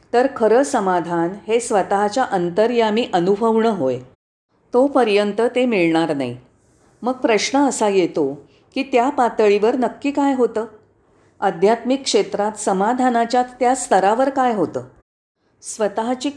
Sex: female